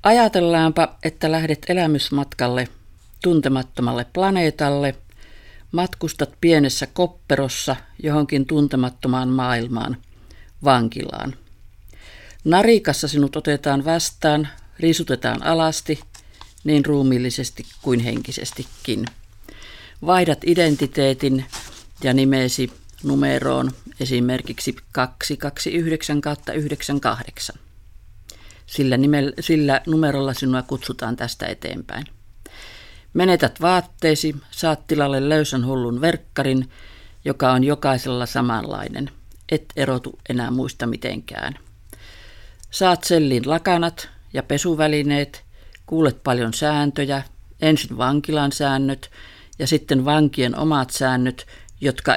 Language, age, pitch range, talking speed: Finnish, 50-69, 120-150 Hz, 80 wpm